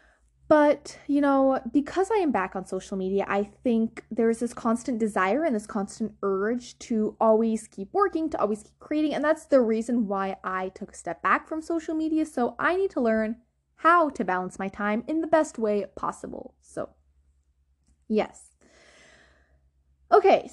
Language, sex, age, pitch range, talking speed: English, female, 20-39, 205-305 Hz, 175 wpm